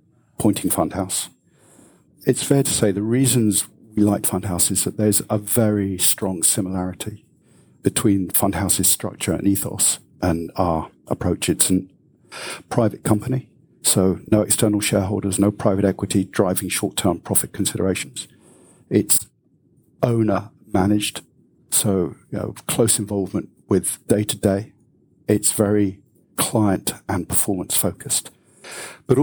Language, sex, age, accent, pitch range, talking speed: English, male, 50-69, British, 95-115 Hz, 115 wpm